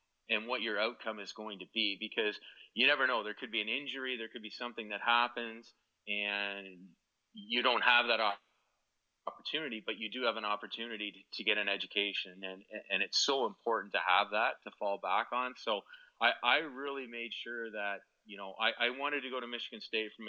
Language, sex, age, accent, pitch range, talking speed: English, male, 30-49, American, 100-115 Hz, 205 wpm